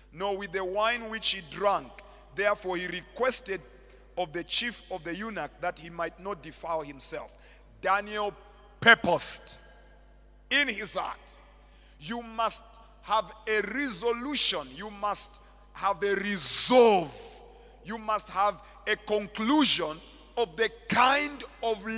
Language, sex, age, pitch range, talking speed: English, male, 50-69, 190-260 Hz, 125 wpm